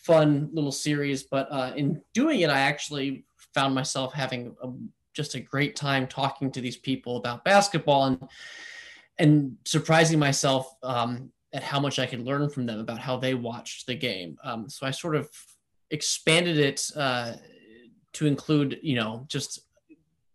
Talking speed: 160 wpm